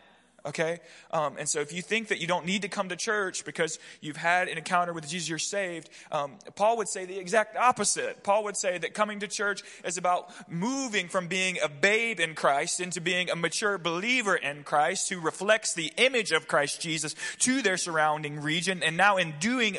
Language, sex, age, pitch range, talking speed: English, male, 20-39, 145-195 Hz, 210 wpm